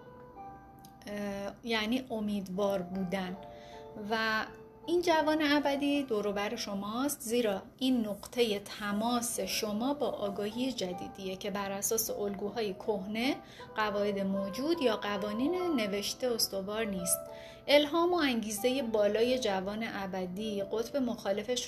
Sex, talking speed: female, 100 wpm